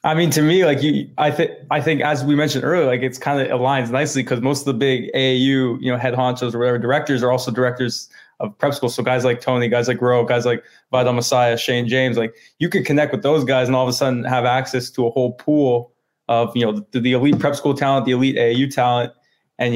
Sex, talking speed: male, 255 wpm